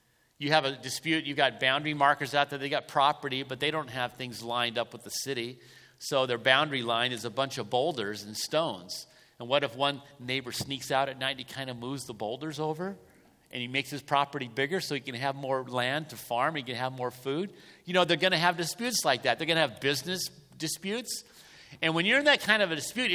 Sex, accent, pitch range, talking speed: male, American, 120-150 Hz, 245 wpm